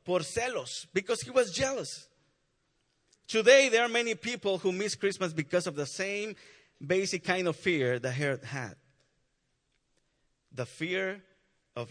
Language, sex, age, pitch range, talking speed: English, male, 50-69, 145-220 Hz, 135 wpm